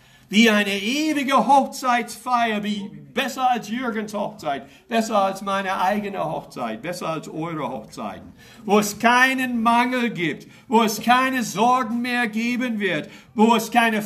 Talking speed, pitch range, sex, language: 140 wpm, 180-245 Hz, male, English